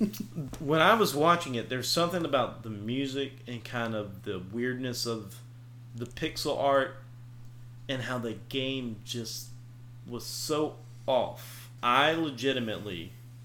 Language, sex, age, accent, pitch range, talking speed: English, male, 30-49, American, 120-135 Hz, 130 wpm